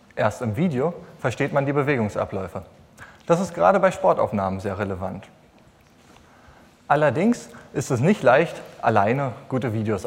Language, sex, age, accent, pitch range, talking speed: German, male, 30-49, German, 110-170 Hz, 130 wpm